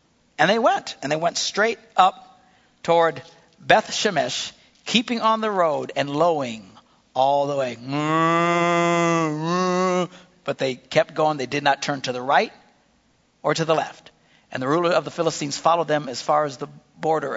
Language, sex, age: English, male, 60-79